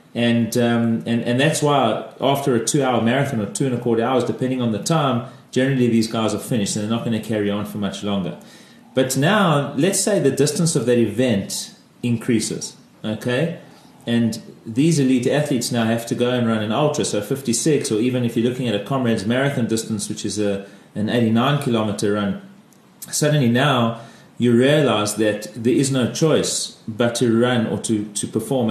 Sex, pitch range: male, 110-135 Hz